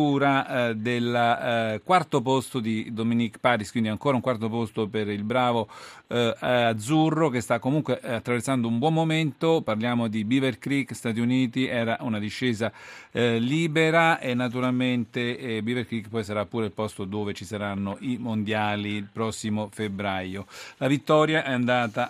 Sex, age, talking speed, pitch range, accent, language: male, 40-59, 150 wpm, 115-140 Hz, native, Italian